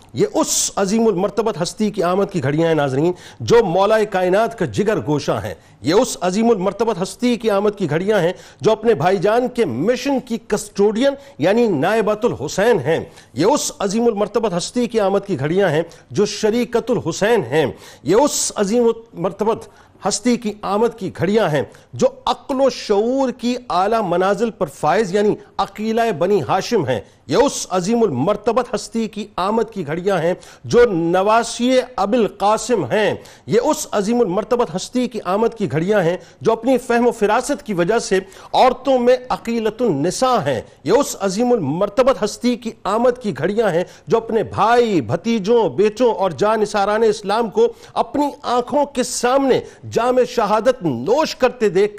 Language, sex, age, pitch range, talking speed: Urdu, male, 50-69, 195-245 Hz, 165 wpm